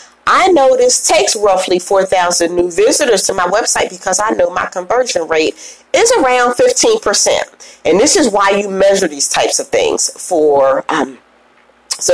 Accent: American